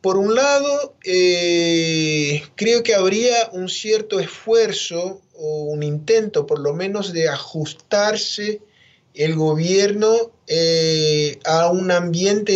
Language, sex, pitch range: Spanish, male, 155-205 Hz